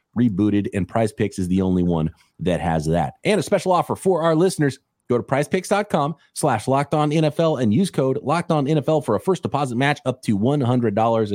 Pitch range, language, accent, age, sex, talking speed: 100-160 Hz, English, American, 30-49, male, 205 wpm